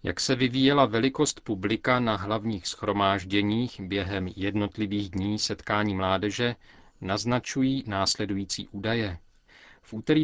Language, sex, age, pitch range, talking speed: Czech, male, 40-59, 100-120 Hz, 105 wpm